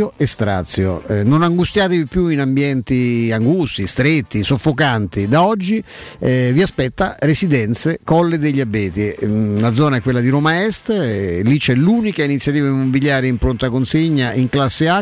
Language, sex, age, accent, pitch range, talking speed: Italian, male, 50-69, native, 115-155 Hz, 160 wpm